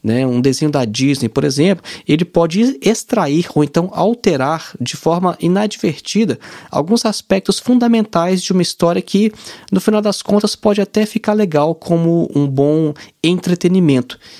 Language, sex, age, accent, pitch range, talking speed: Portuguese, male, 20-39, Brazilian, 140-185 Hz, 145 wpm